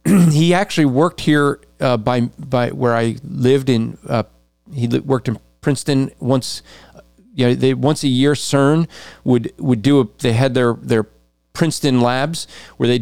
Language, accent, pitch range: English, American, 125-165 Hz